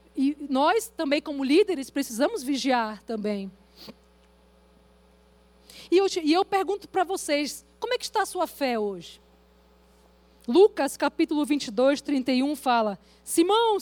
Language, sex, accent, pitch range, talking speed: Portuguese, female, Brazilian, 205-330 Hz, 120 wpm